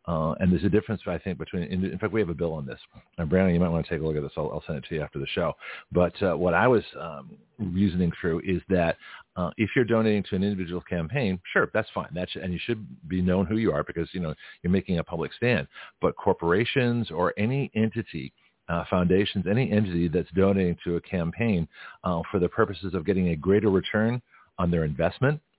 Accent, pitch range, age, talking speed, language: American, 90-105 Hz, 40-59, 235 wpm, English